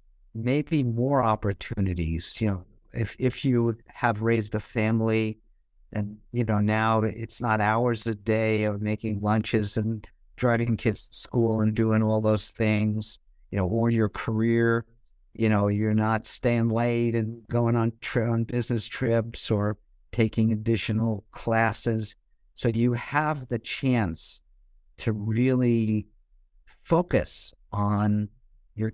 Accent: American